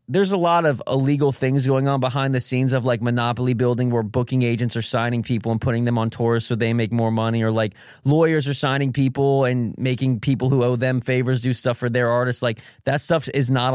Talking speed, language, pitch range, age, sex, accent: 235 wpm, English, 115-135 Hz, 20-39, male, American